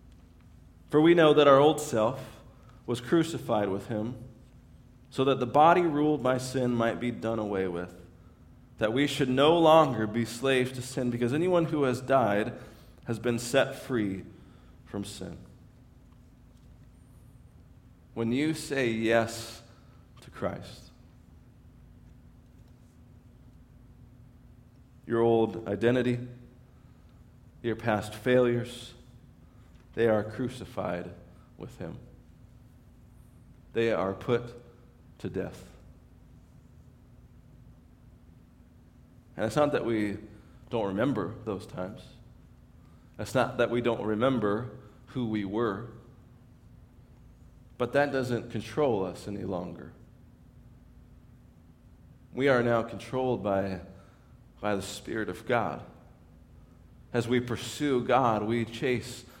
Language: English